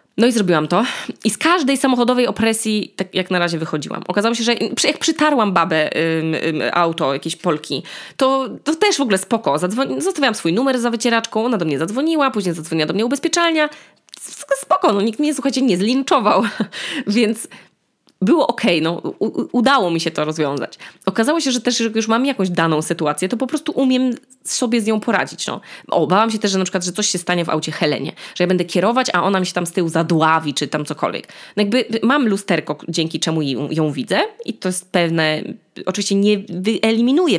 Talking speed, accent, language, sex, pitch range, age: 195 wpm, native, Polish, female, 170-240 Hz, 20-39